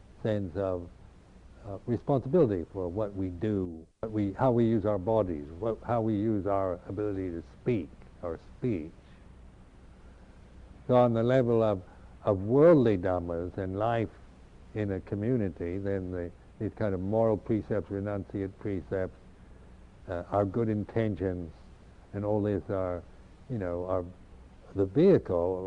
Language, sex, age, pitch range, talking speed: English, male, 60-79, 90-110 Hz, 140 wpm